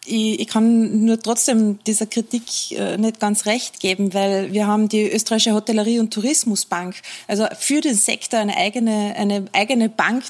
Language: German